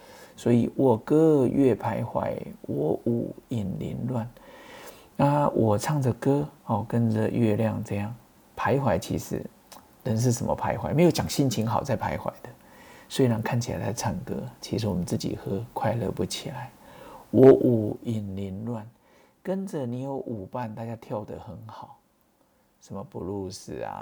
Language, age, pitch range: Chinese, 50-69, 110-135 Hz